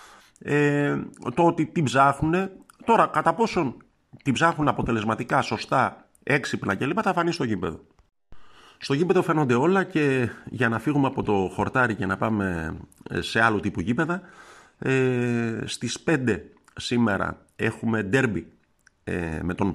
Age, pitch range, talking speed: 50-69, 95-125 Hz, 135 wpm